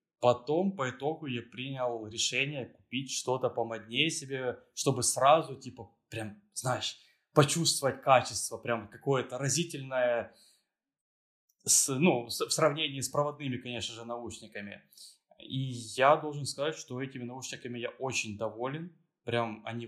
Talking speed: 120 wpm